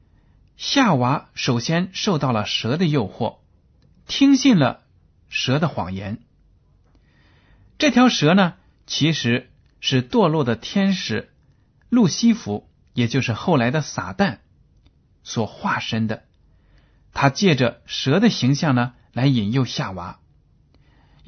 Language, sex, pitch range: Chinese, male, 120-190 Hz